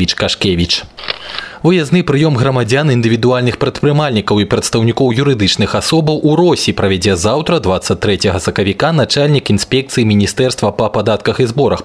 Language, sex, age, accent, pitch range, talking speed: Russian, male, 20-39, native, 95-135 Hz, 110 wpm